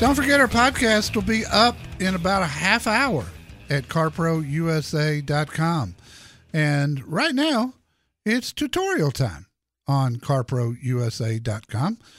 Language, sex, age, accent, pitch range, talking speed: English, male, 50-69, American, 130-185 Hz, 110 wpm